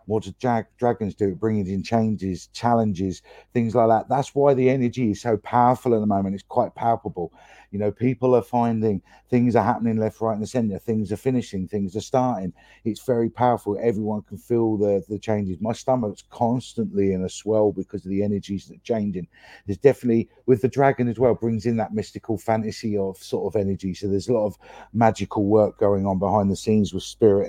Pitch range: 100-120 Hz